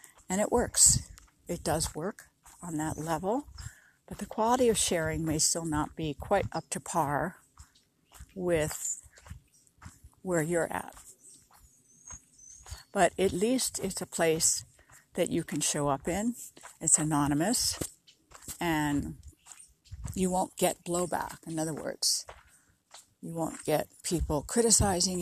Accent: American